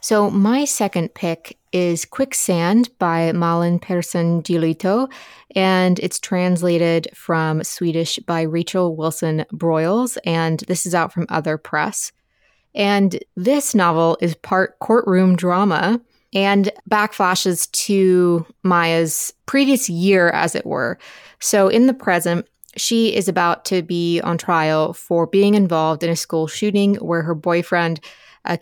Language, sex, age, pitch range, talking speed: English, female, 20-39, 170-195 Hz, 130 wpm